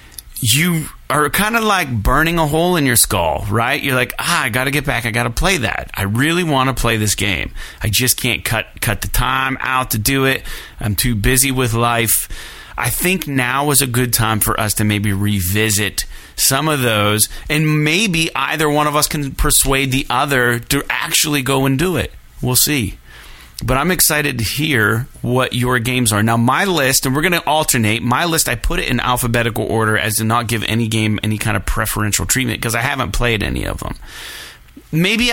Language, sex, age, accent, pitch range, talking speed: English, male, 30-49, American, 105-135 Hz, 210 wpm